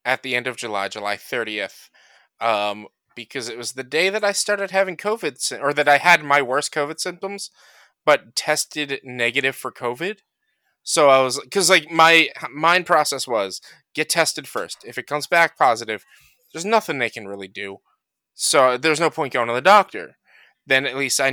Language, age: English, 20-39